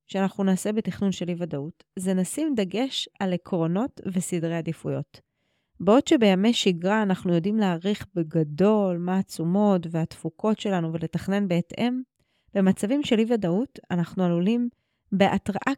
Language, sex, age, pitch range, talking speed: Hebrew, female, 30-49, 175-225 Hz, 120 wpm